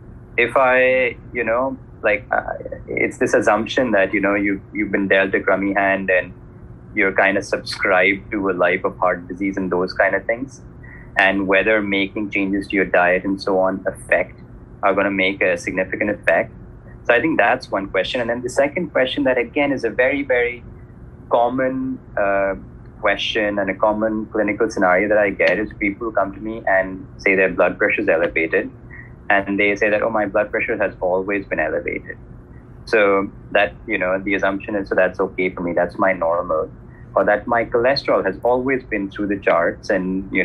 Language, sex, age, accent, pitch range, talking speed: English, male, 20-39, Indian, 95-120 Hz, 195 wpm